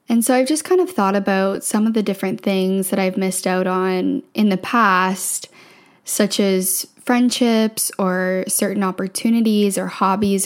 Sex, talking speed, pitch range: female, 165 wpm, 185-215 Hz